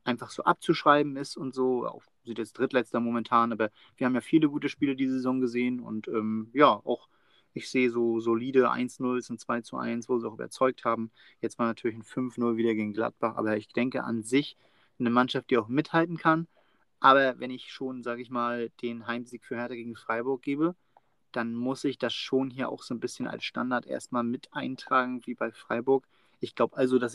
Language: German